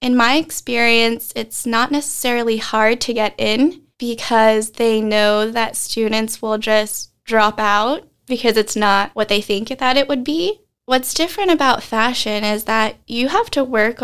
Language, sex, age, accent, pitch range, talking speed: English, female, 10-29, American, 210-235 Hz, 165 wpm